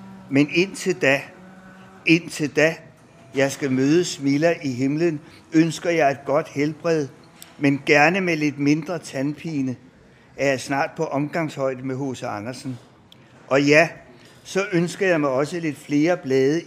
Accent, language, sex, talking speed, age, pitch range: native, Danish, male, 145 wpm, 60-79, 135-165 Hz